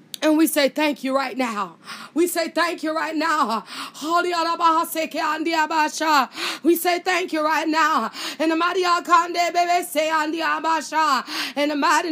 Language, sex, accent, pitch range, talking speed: English, female, American, 300-335 Hz, 145 wpm